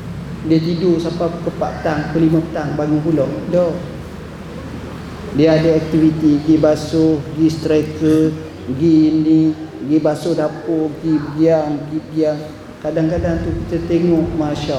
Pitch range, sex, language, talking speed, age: 150-175 Hz, male, Malay, 125 wpm, 40-59